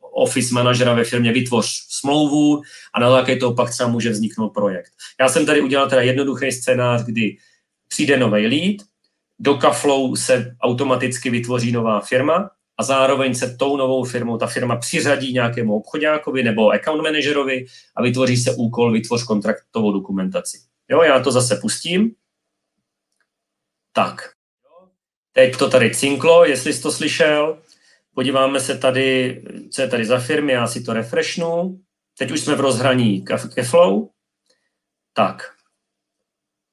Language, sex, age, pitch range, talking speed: Czech, male, 30-49, 115-140 Hz, 145 wpm